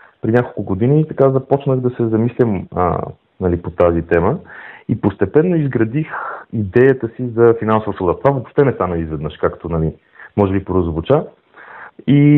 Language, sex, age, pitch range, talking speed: Bulgarian, male, 30-49, 95-125 Hz, 150 wpm